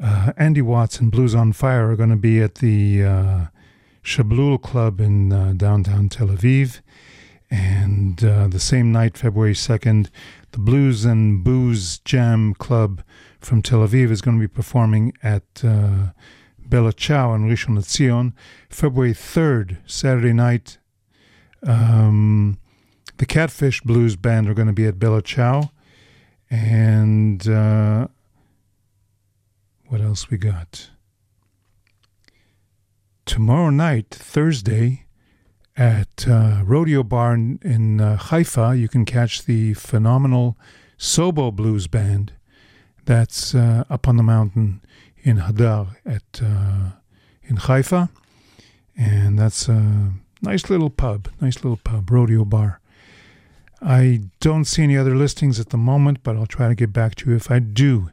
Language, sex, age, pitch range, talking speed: English, male, 50-69, 105-125 Hz, 135 wpm